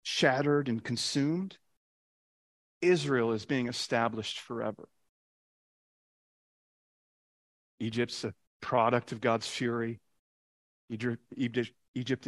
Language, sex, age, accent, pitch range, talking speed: English, male, 40-59, American, 110-135 Hz, 75 wpm